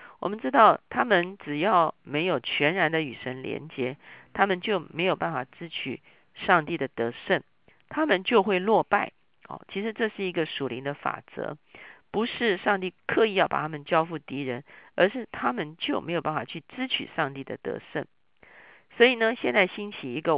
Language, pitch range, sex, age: Chinese, 145-200 Hz, female, 50-69